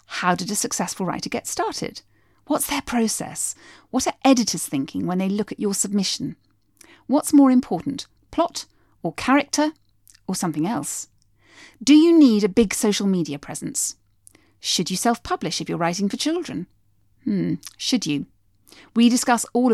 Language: English